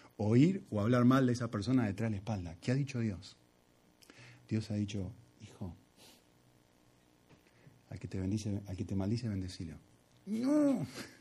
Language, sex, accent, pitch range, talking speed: Spanish, male, Argentinian, 100-135 Hz, 155 wpm